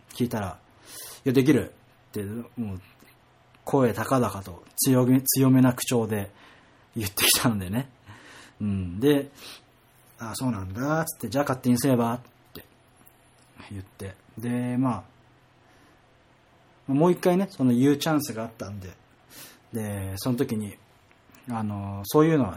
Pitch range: 105-130 Hz